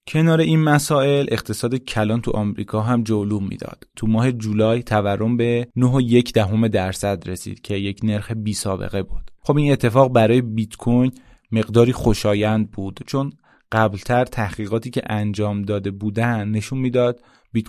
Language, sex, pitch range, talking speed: Persian, male, 105-120 Hz, 150 wpm